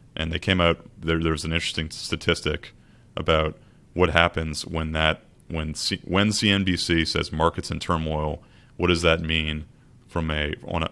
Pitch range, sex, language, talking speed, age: 75-85 Hz, male, English, 160 wpm, 30-49